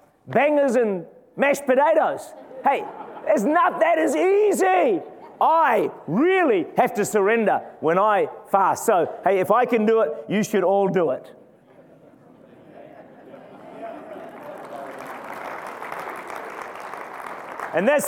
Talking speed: 105 wpm